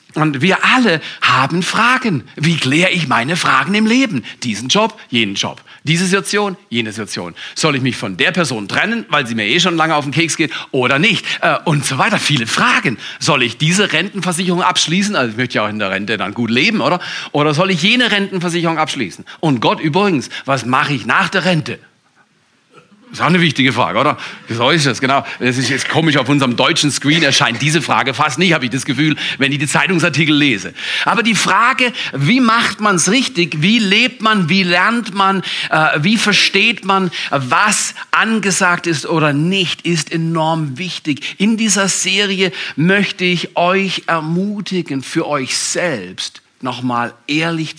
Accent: German